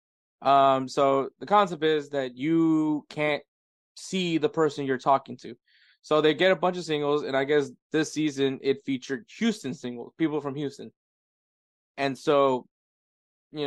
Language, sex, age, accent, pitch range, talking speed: English, male, 20-39, American, 130-155 Hz, 160 wpm